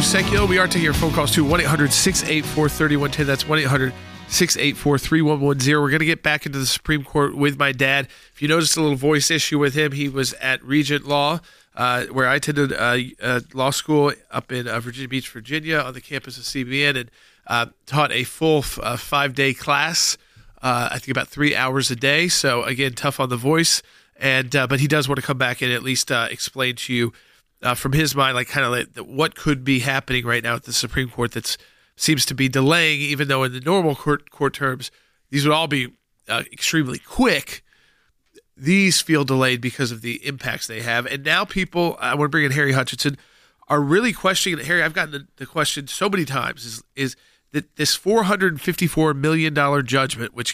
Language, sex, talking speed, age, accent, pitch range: English, male, 210 wpm, 40-59, American, 130-150 Hz